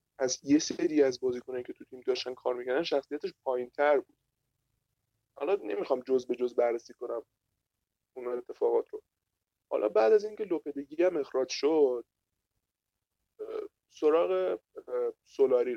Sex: male